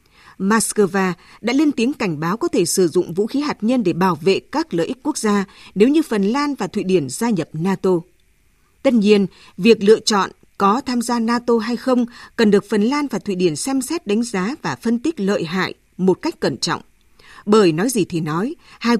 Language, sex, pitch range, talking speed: Vietnamese, female, 190-245 Hz, 220 wpm